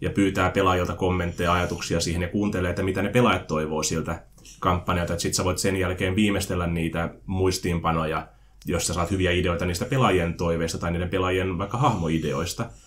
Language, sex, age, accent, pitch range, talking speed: Finnish, male, 30-49, native, 90-115 Hz, 165 wpm